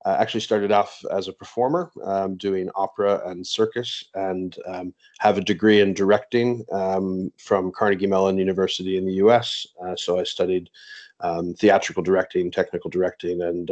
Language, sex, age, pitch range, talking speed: English, male, 30-49, 95-105 Hz, 160 wpm